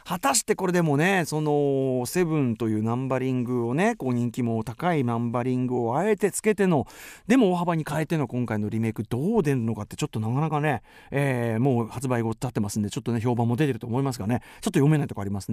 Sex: male